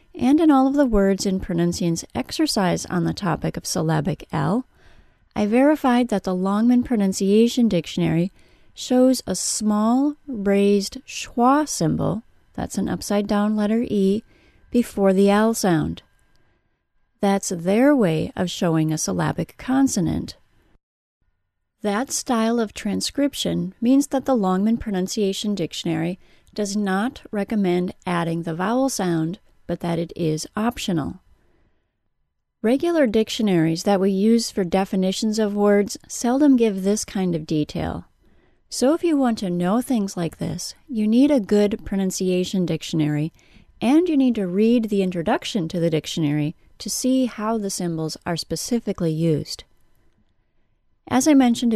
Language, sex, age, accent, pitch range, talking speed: English, female, 30-49, American, 175-235 Hz, 140 wpm